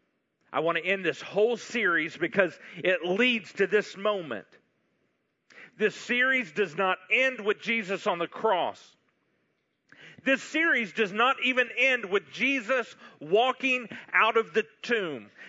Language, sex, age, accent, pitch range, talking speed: English, male, 40-59, American, 190-250 Hz, 140 wpm